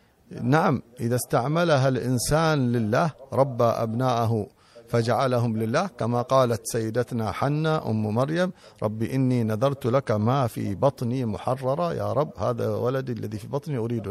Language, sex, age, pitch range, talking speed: Arabic, male, 50-69, 110-135 Hz, 130 wpm